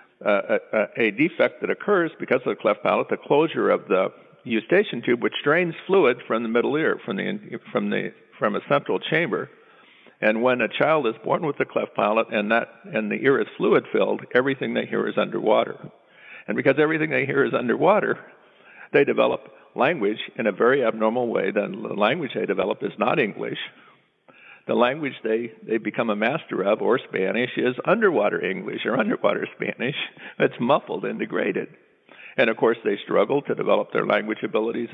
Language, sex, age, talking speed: English, male, 50-69, 185 wpm